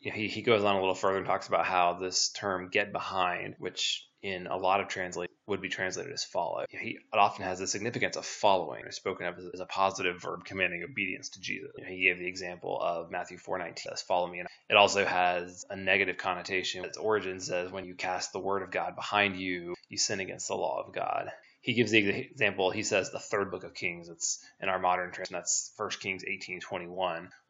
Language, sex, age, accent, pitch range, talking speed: English, male, 20-39, American, 90-100 Hz, 240 wpm